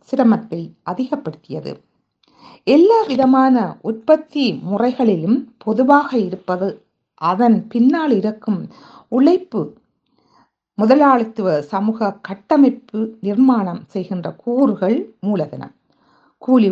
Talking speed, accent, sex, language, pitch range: 70 wpm, native, female, Tamil, 195-260 Hz